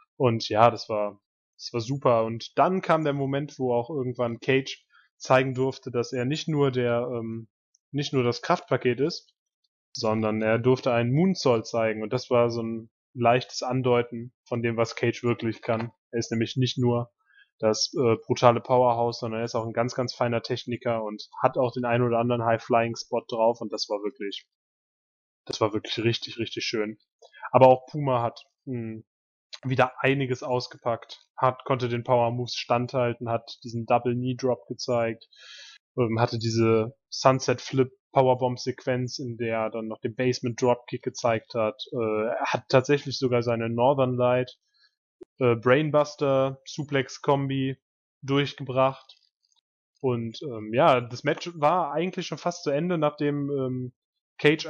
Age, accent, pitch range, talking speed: 10-29, German, 115-140 Hz, 160 wpm